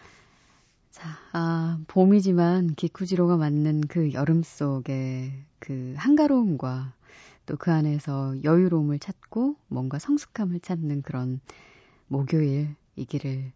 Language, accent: Korean, native